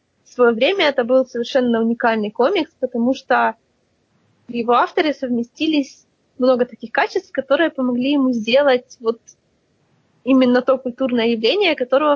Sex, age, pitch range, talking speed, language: female, 20-39, 235-275 Hz, 130 wpm, Russian